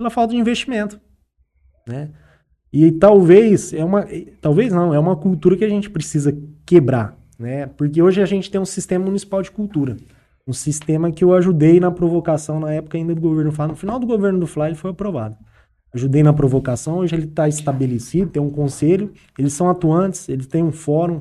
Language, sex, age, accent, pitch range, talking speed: Portuguese, male, 20-39, Brazilian, 130-175 Hz, 195 wpm